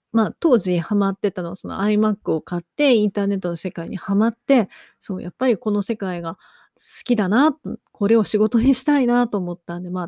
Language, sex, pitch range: Japanese, female, 185-250 Hz